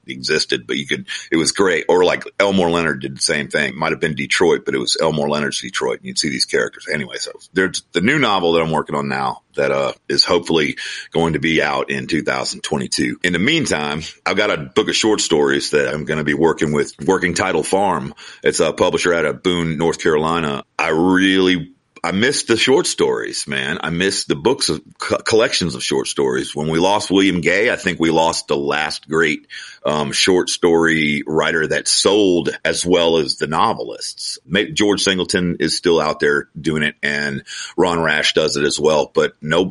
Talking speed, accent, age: 205 wpm, American, 50-69